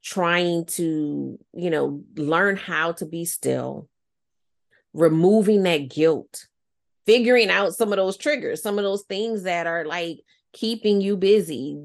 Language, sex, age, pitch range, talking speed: English, female, 30-49, 145-175 Hz, 140 wpm